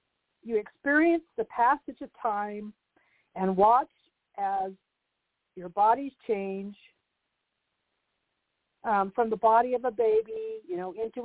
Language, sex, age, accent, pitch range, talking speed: English, female, 50-69, American, 210-280 Hz, 115 wpm